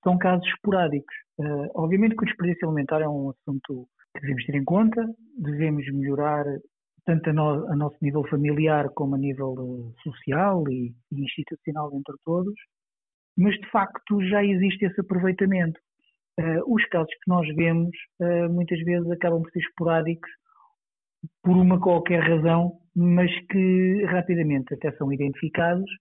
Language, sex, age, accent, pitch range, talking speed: Portuguese, male, 50-69, Portuguese, 145-185 Hz, 140 wpm